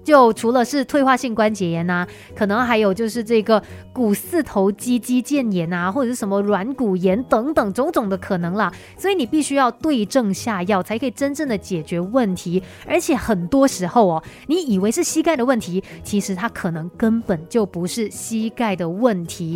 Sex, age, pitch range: female, 30-49, 195-275 Hz